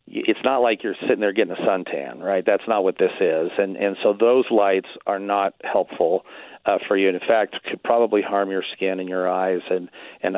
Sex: male